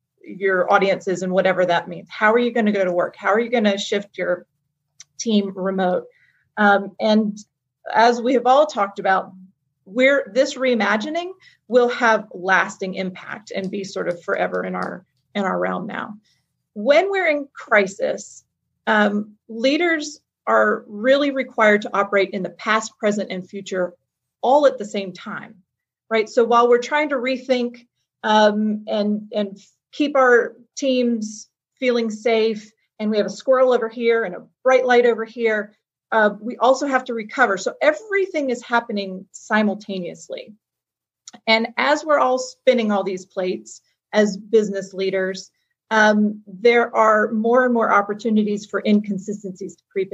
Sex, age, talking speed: female, 40-59, 160 wpm